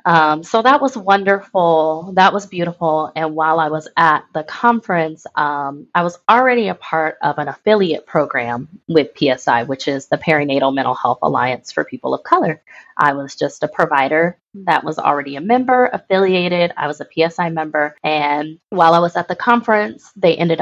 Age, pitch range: 20-39, 150-180 Hz